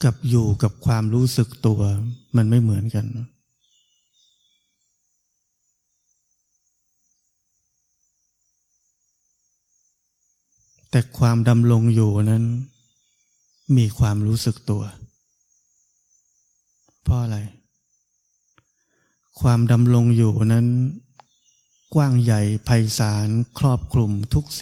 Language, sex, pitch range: Thai, male, 105-120 Hz